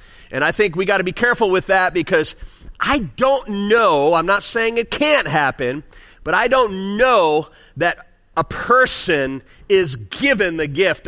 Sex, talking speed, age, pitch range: male, 170 wpm, 40-59, 190-280 Hz